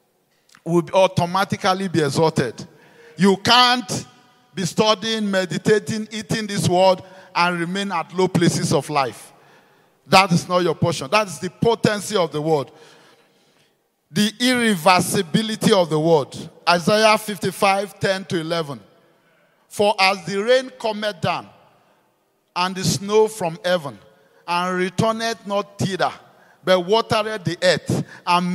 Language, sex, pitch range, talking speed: English, male, 175-210 Hz, 130 wpm